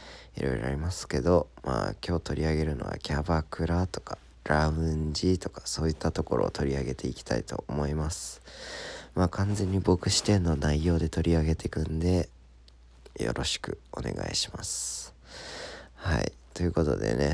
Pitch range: 70-95 Hz